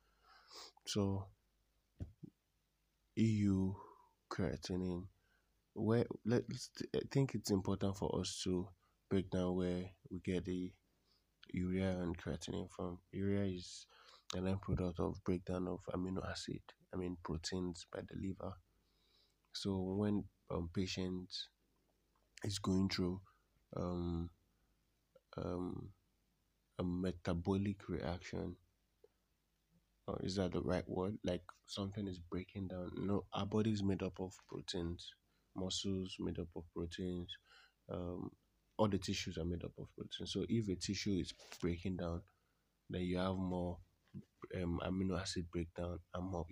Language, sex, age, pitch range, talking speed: English, male, 20-39, 90-100 Hz, 130 wpm